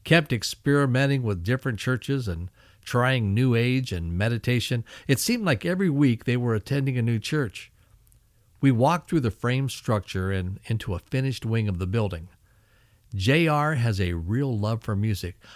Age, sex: 60-79, male